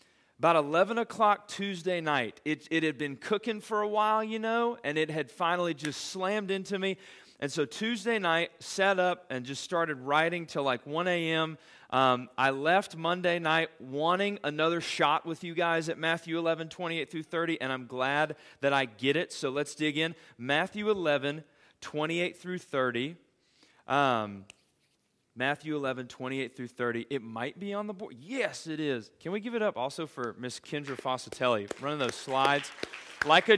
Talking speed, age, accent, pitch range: 180 wpm, 30-49, American, 145-200 Hz